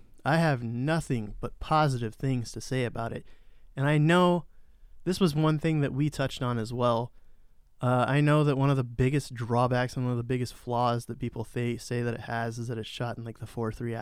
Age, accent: 20-39, American